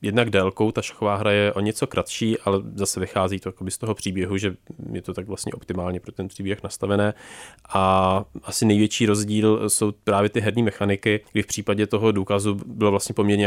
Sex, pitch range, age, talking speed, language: male, 95-110 Hz, 20-39, 190 wpm, Czech